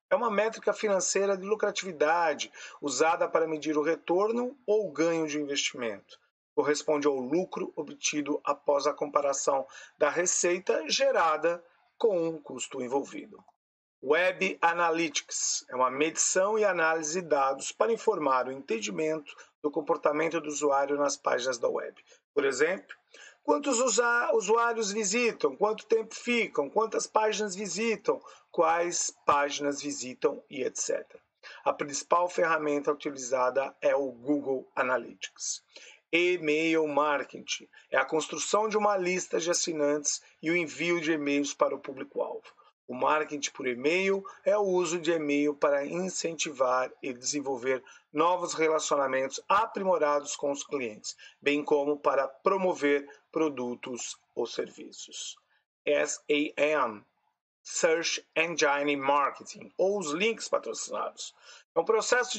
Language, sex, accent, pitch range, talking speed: Portuguese, male, Brazilian, 145-210 Hz, 125 wpm